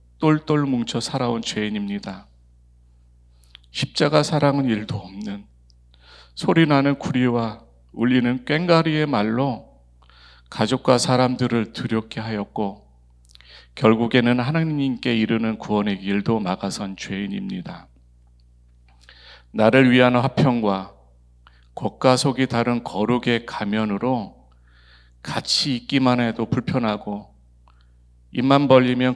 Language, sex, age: Korean, male, 40-59